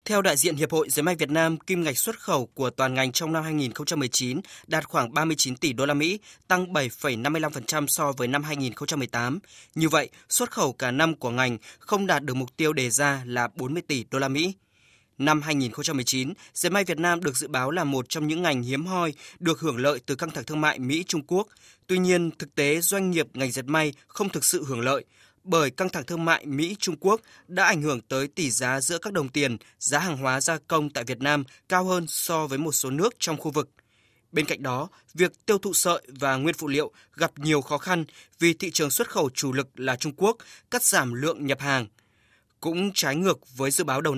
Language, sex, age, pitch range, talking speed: Vietnamese, male, 20-39, 135-170 Hz, 225 wpm